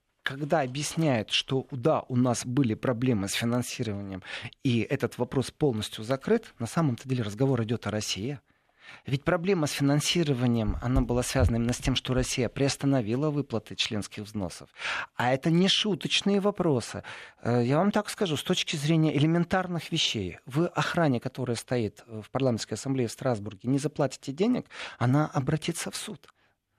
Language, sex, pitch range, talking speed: Russian, male, 120-160 Hz, 150 wpm